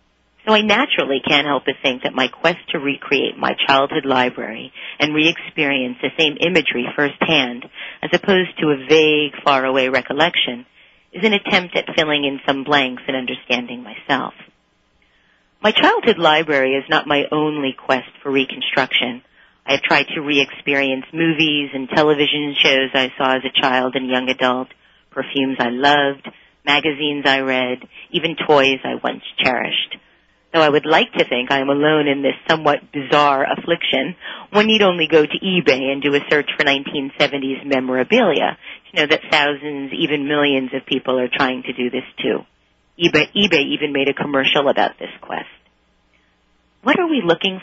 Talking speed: 165 wpm